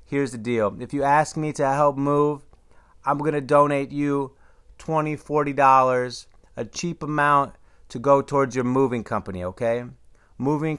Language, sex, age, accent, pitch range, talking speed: English, male, 30-49, American, 105-140 Hz, 155 wpm